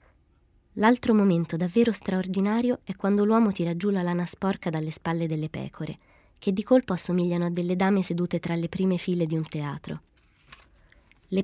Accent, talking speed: native, 170 wpm